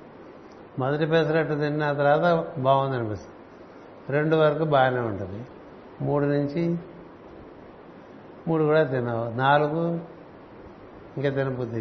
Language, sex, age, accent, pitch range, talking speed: Telugu, male, 60-79, native, 135-160 Hz, 90 wpm